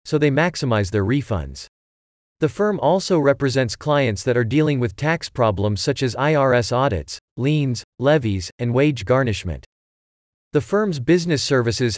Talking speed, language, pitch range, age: 145 wpm, English, 110-150 Hz, 40-59